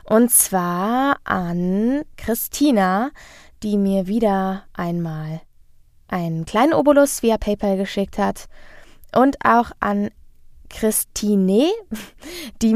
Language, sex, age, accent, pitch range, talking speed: German, female, 20-39, German, 185-230 Hz, 95 wpm